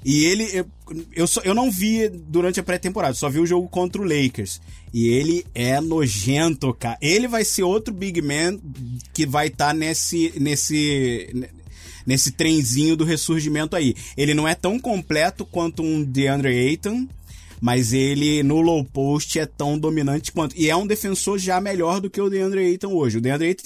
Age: 20-39